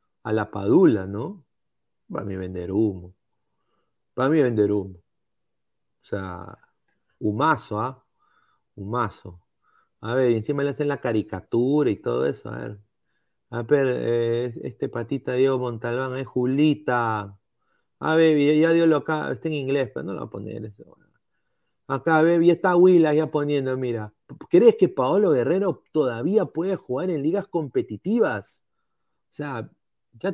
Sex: male